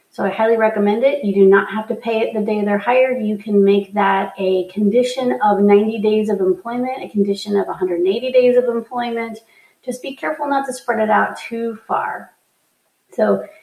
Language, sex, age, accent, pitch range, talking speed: English, female, 30-49, American, 200-235 Hz, 200 wpm